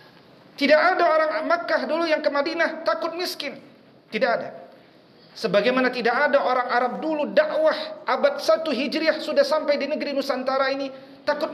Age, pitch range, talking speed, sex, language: 40-59, 240-305 Hz, 150 wpm, male, Indonesian